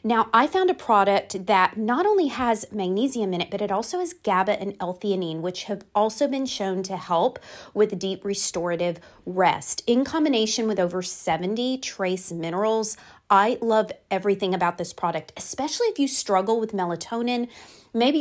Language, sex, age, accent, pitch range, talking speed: English, female, 30-49, American, 180-230 Hz, 165 wpm